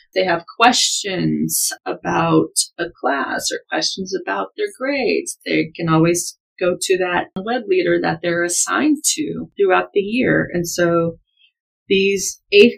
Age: 30-49